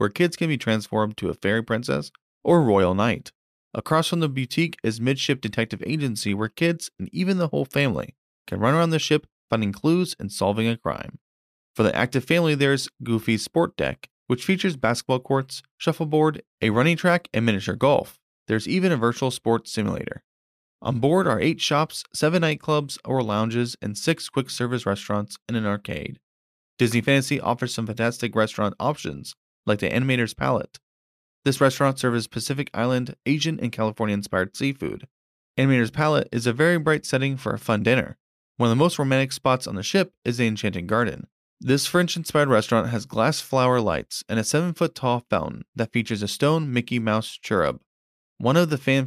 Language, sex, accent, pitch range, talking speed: English, male, American, 110-150 Hz, 180 wpm